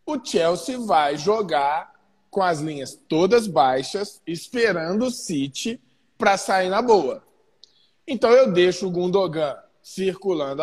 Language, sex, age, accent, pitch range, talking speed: Portuguese, male, 20-39, Brazilian, 175-250 Hz, 125 wpm